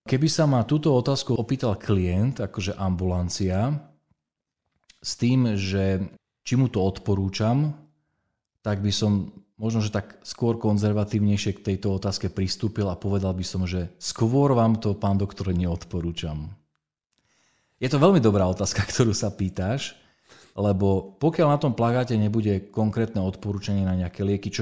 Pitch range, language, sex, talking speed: 95-115 Hz, Slovak, male, 145 wpm